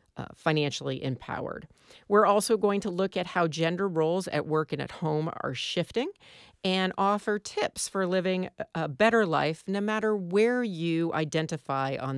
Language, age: English, 40-59